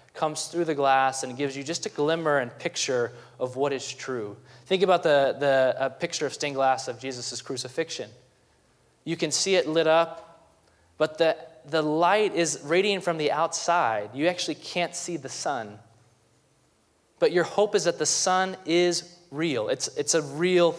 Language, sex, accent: English, male, American